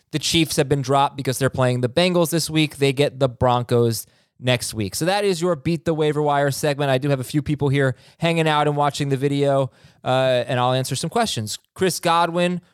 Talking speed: 225 wpm